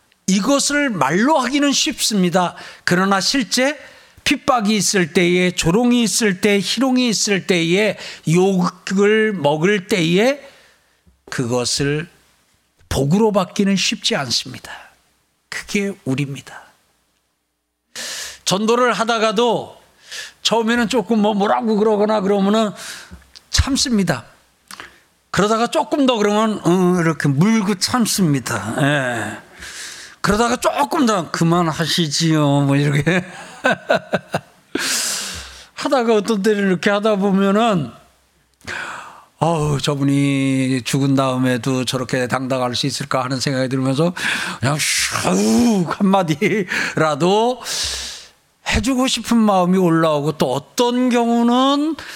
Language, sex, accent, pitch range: Korean, male, native, 145-225 Hz